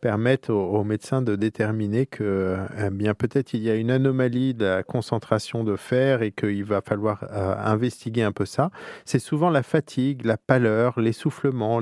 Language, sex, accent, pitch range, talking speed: French, male, French, 105-130 Hz, 180 wpm